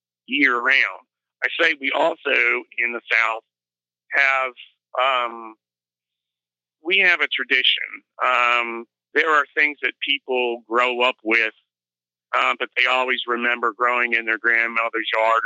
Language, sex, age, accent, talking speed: English, male, 40-59, American, 130 wpm